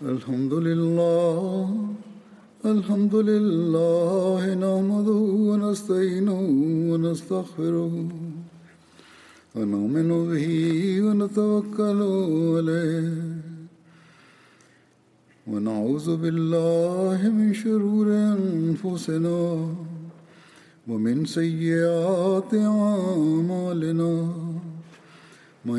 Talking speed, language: 40 wpm, Indonesian